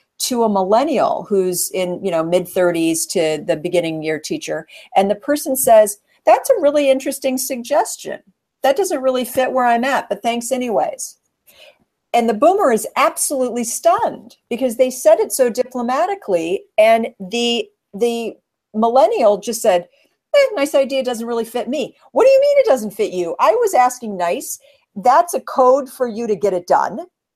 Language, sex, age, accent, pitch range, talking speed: English, female, 50-69, American, 205-270 Hz, 170 wpm